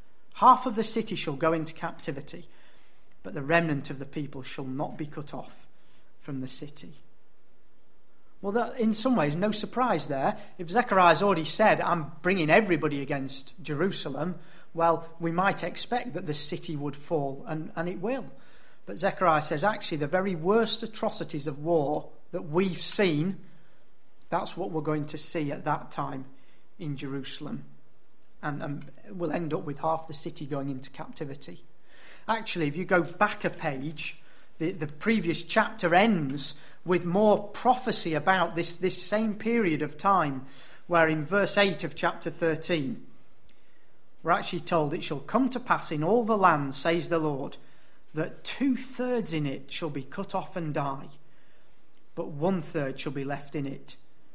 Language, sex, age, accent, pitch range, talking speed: English, male, 40-59, British, 150-195 Hz, 165 wpm